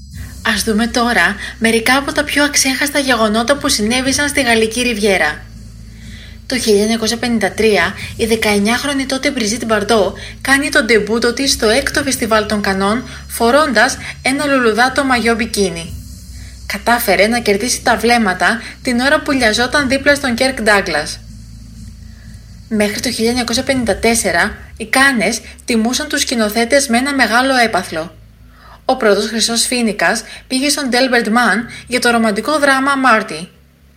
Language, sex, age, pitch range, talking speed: Greek, female, 30-49, 205-260 Hz, 125 wpm